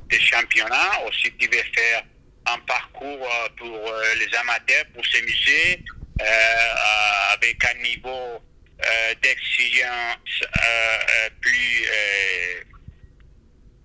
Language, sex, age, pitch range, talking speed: French, male, 60-79, 110-125 Hz, 95 wpm